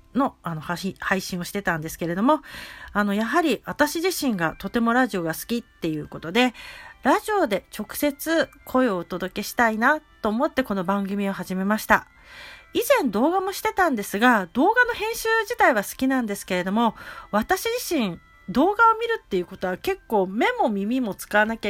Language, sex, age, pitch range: Japanese, female, 40-59, 190-300 Hz